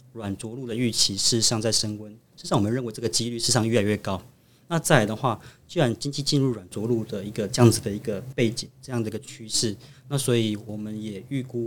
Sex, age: male, 20-39